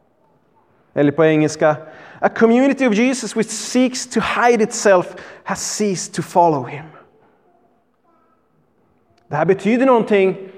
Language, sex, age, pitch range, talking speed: Swedish, male, 20-39, 185-295 Hz, 120 wpm